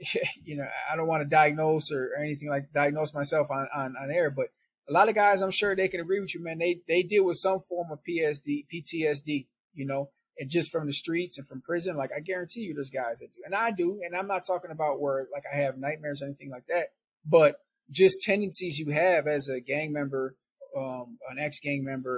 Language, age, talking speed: English, 20-39, 235 wpm